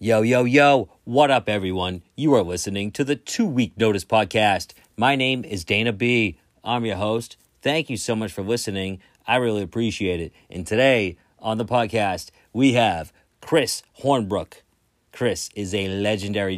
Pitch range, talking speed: 95-115 Hz, 165 wpm